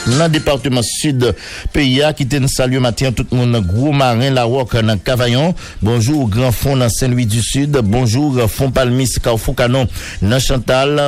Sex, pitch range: male, 115-140 Hz